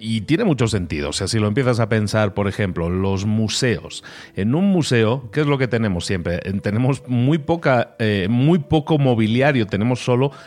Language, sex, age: Spanish, male, 40-59